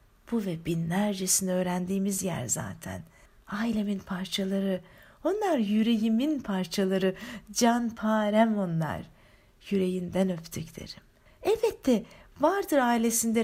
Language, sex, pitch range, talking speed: Turkish, female, 180-225 Hz, 85 wpm